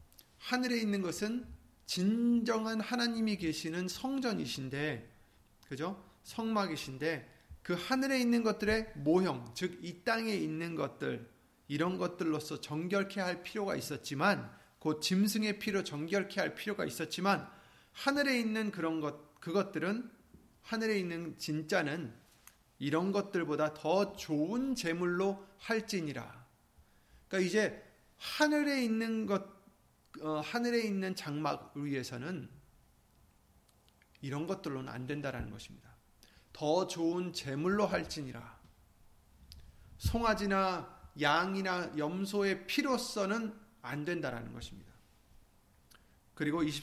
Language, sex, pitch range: Korean, male, 150-215 Hz